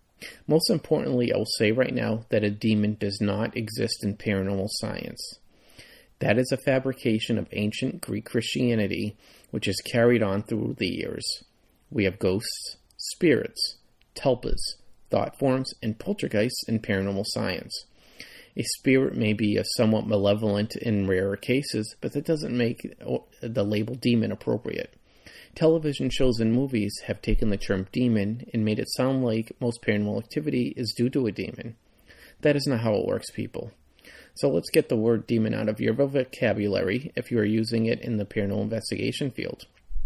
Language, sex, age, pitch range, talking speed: English, male, 40-59, 105-130 Hz, 165 wpm